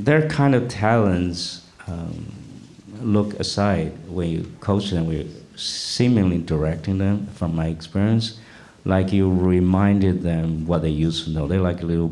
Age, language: 50-69, English